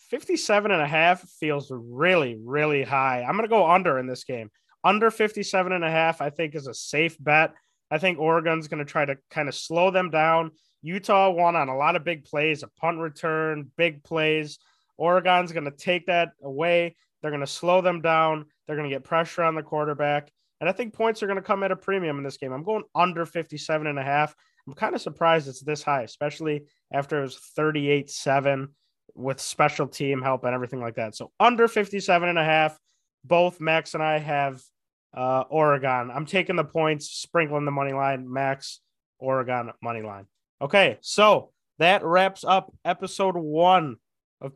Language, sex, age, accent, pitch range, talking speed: English, male, 20-39, American, 145-185 Hz, 195 wpm